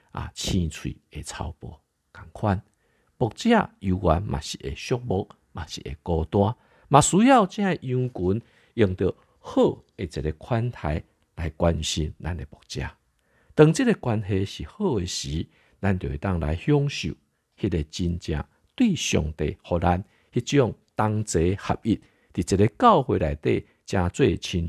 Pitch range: 80-120 Hz